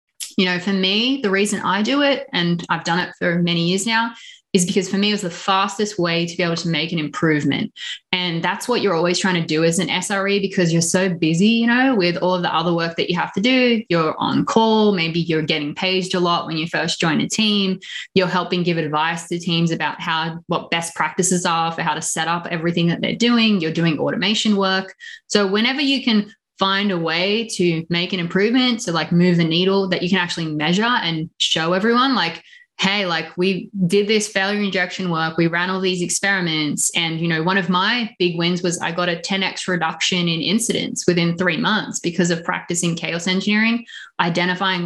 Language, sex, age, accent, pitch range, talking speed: English, female, 20-39, Australian, 170-210 Hz, 220 wpm